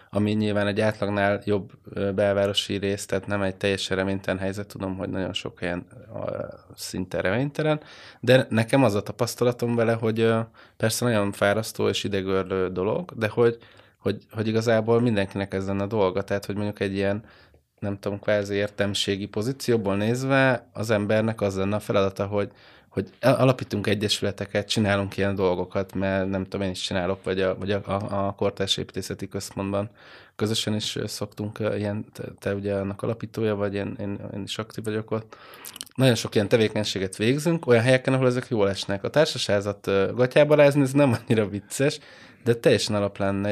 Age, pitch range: 20-39, 95-115 Hz